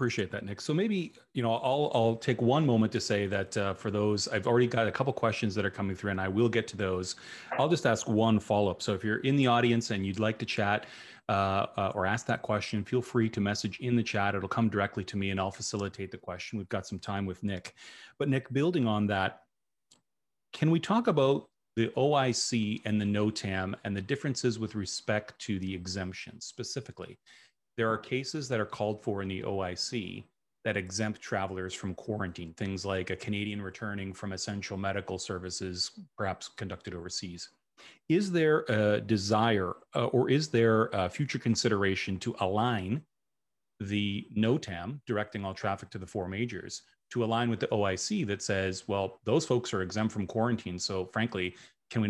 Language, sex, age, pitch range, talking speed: English, male, 30-49, 95-115 Hz, 195 wpm